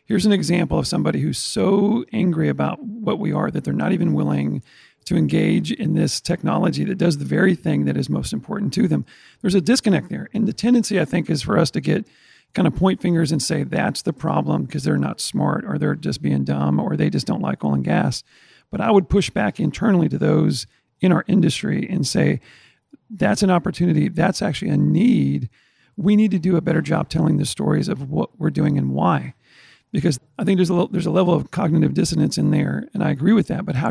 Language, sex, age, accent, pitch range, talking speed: English, male, 40-59, American, 160-200 Hz, 230 wpm